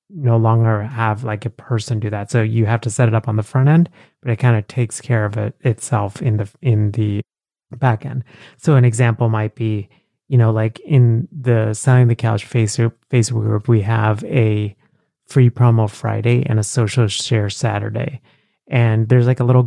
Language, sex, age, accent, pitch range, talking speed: English, male, 30-49, American, 110-125 Hz, 200 wpm